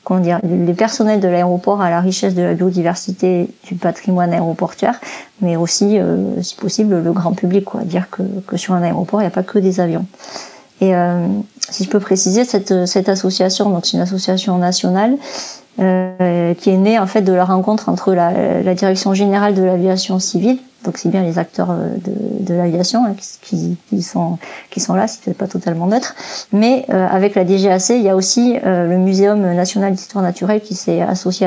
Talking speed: 200 wpm